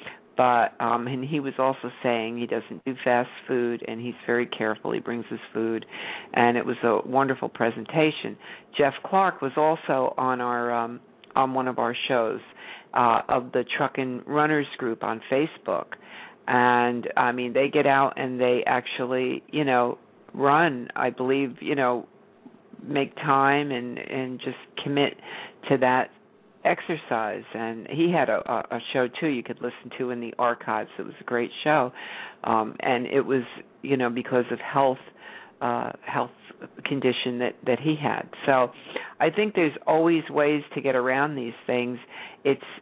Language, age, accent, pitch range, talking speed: English, 50-69, American, 120-140 Hz, 165 wpm